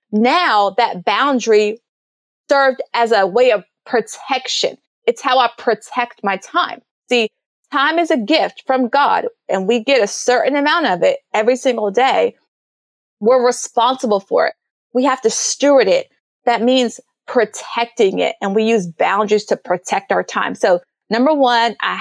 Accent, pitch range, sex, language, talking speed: American, 225-300 Hz, female, English, 160 wpm